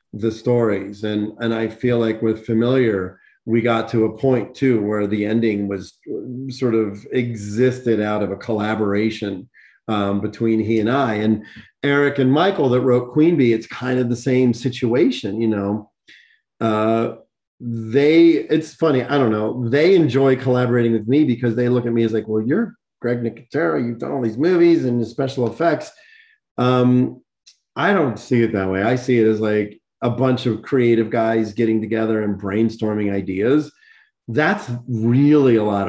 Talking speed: 170 wpm